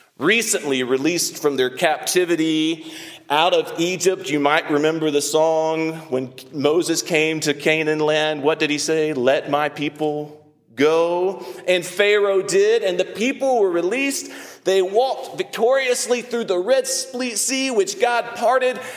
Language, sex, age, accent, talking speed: English, male, 40-59, American, 140 wpm